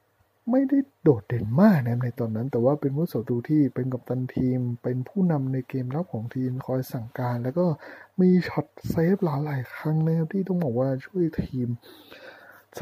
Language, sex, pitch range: Thai, male, 125-170 Hz